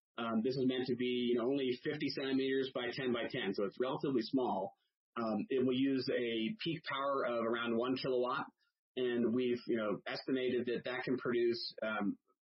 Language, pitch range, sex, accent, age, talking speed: English, 120-145 Hz, male, American, 30-49, 195 wpm